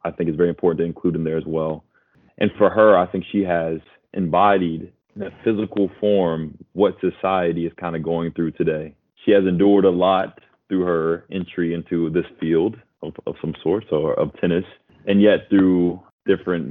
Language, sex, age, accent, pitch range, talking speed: English, male, 20-39, American, 80-95 Hz, 190 wpm